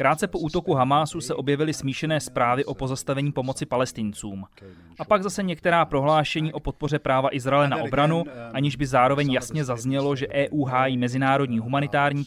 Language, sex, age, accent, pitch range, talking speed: Czech, male, 30-49, native, 130-160 Hz, 160 wpm